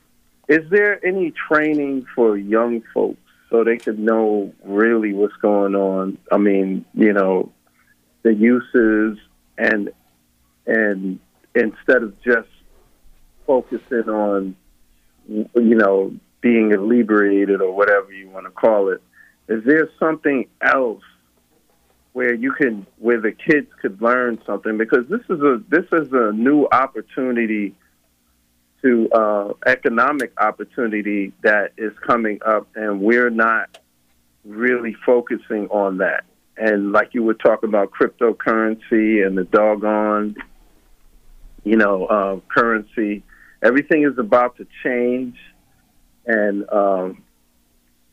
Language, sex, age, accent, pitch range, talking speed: English, male, 40-59, American, 95-120 Hz, 120 wpm